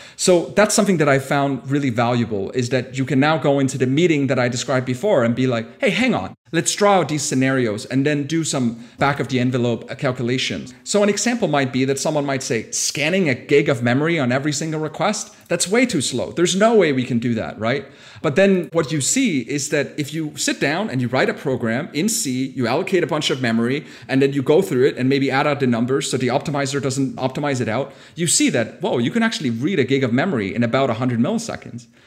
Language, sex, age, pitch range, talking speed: English, male, 40-59, 125-160 Hz, 245 wpm